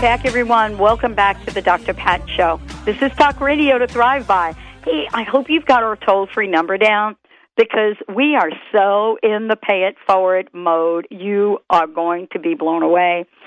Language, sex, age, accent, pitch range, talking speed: English, female, 50-69, American, 185-245 Hz, 190 wpm